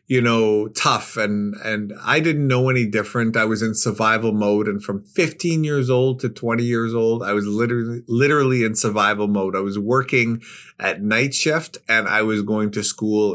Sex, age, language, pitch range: male, 30-49, English, 105-130 Hz